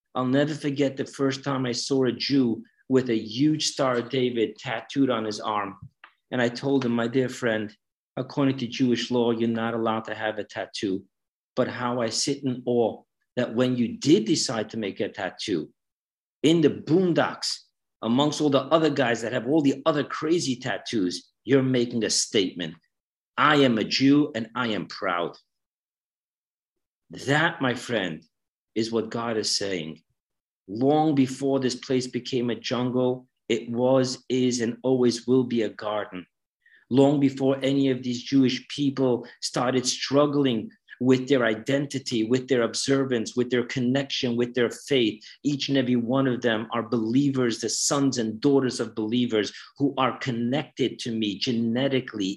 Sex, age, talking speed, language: male, 50-69, 165 wpm, English